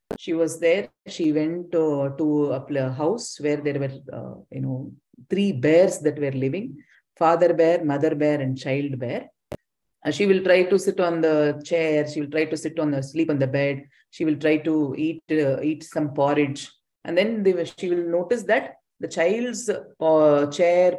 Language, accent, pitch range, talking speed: English, Indian, 150-205 Hz, 195 wpm